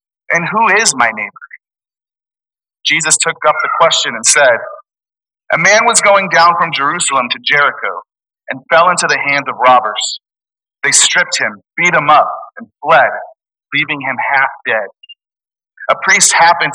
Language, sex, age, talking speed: English, male, 40-59, 155 wpm